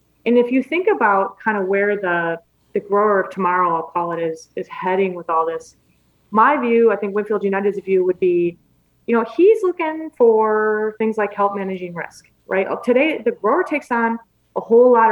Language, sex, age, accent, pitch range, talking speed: English, female, 20-39, American, 185-230 Hz, 200 wpm